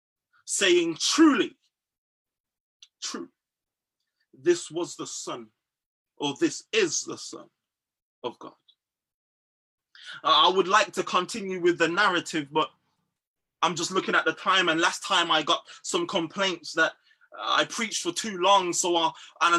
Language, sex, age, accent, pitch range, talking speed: English, male, 20-39, British, 190-265 Hz, 135 wpm